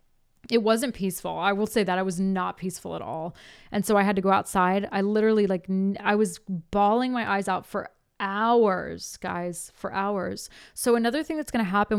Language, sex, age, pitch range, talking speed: English, female, 20-39, 195-235 Hz, 210 wpm